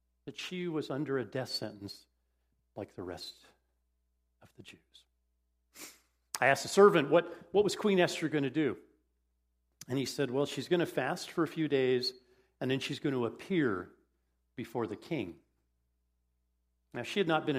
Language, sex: English, male